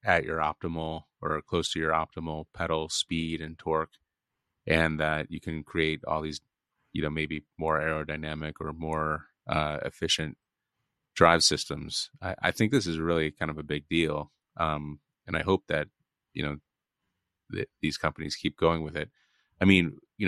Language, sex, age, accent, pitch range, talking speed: English, male, 30-49, American, 75-80 Hz, 170 wpm